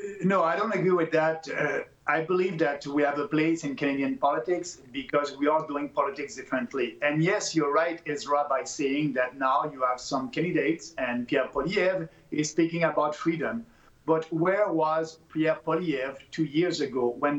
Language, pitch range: English, 145-180 Hz